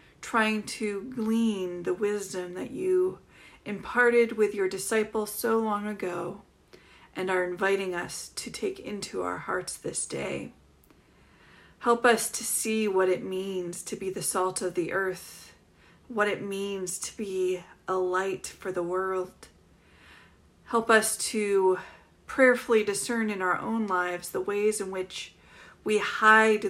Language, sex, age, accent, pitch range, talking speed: English, female, 30-49, American, 185-220 Hz, 145 wpm